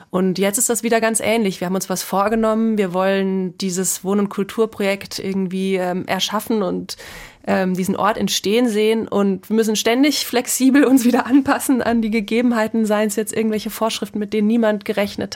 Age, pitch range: 20-39, 185-215 Hz